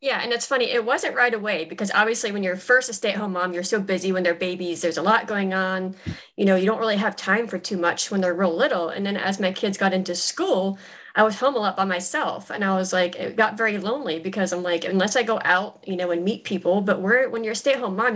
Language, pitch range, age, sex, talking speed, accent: English, 185-225 Hz, 30-49, female, 275 wpm, American